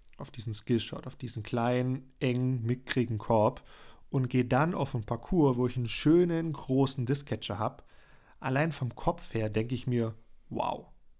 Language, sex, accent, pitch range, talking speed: German, male, German, 115-140 Hz, 160 wpm